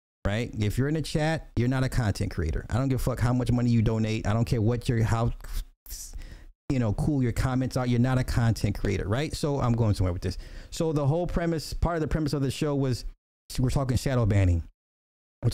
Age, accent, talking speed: 30-49, American, 240 wpm